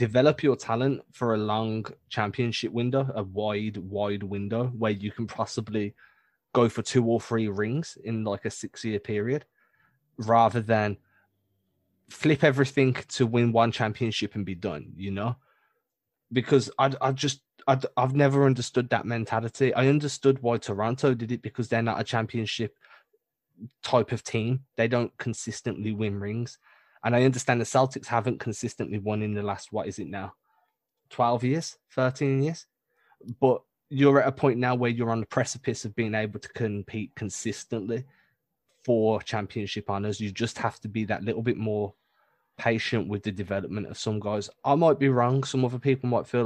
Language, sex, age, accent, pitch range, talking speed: English, male, 20-39, British, 110-130 Hz, 170 wpm